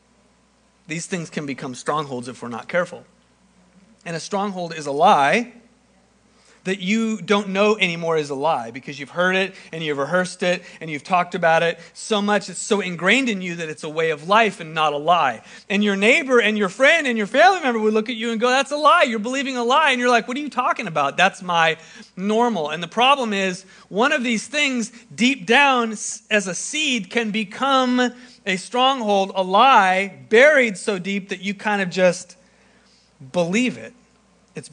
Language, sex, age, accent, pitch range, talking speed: English, male, 40-59, American, 165-230 Hz, 200 wpm